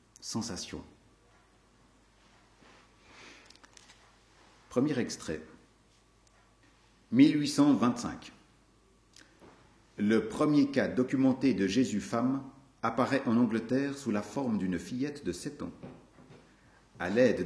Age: 50-69